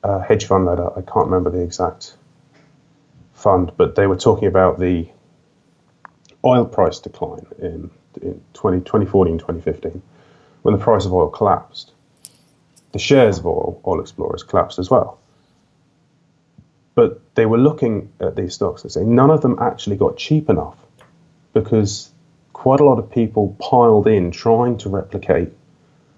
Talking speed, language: 150 wpm, English